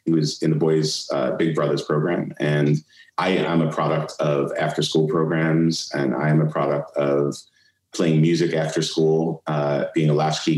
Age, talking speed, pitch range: 30-49, 175 wpm, 75-80 Hz